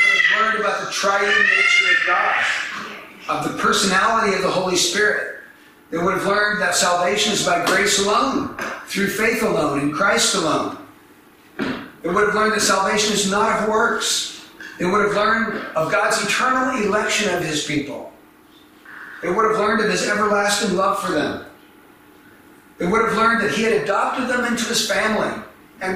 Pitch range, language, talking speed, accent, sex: 180-225 Hz, English, 170 wpm, American, male